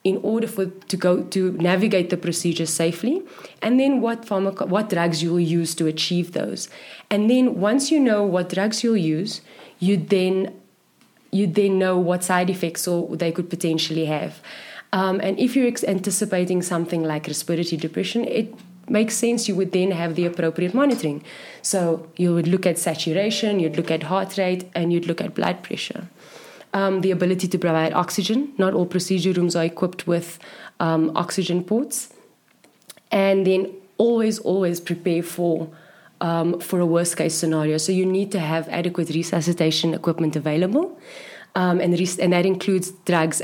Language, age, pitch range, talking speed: English, 20-39, 170-195 Hz, 170 wpm